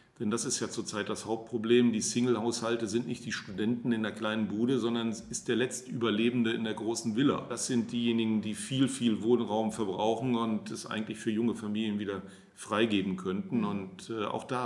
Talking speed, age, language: 190 wpm, 40-59, German